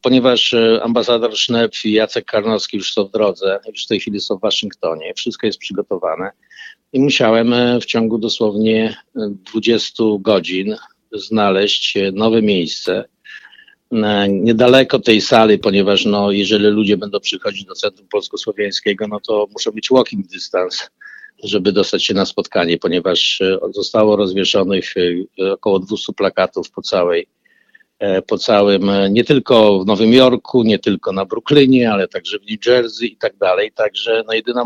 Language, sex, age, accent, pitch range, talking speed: Polish, male, 50-69, native, 105-130 Hz, 140 wpm